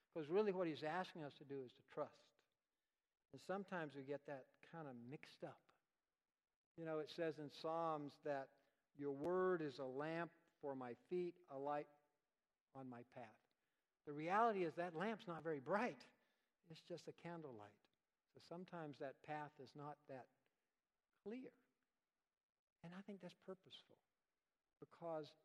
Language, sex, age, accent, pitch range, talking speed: English, male, 60-79, American, 140-180 Hz, 155 wpm